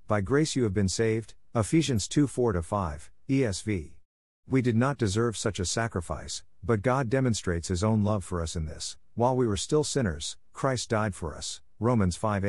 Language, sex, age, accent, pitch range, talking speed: English, male, 50-69, American, 90-115 Hz, 185 wpm